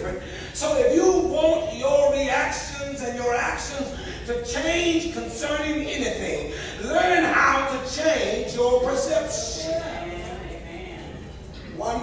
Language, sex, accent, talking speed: English, male, American, 100 wpm